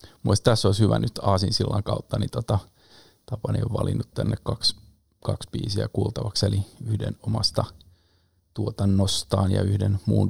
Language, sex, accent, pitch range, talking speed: Finnish, male, native, 105-120 Hz, 140 wpm